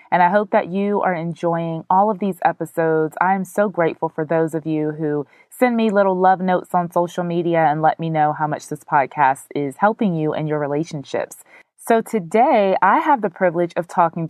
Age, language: 20-39, English